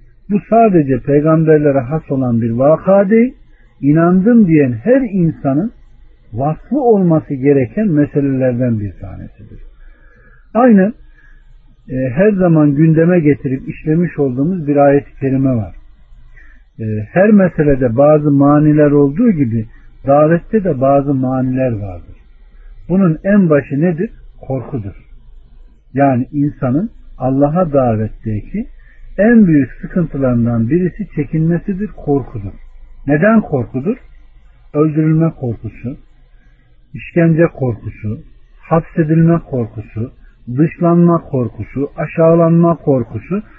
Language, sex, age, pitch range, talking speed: Turkish, male, 50-69, 125-170 Hz, 90 wpm